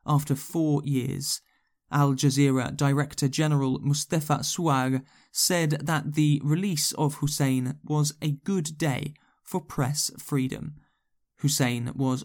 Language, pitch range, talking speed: English, 135-155 Hz, 110 wpm